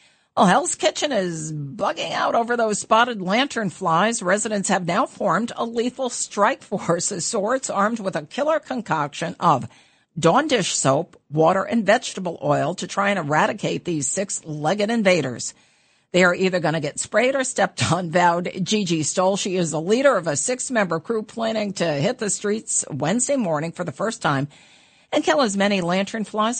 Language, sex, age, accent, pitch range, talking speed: English, female, 50-69, American, 155-215 Hz, 180 wpm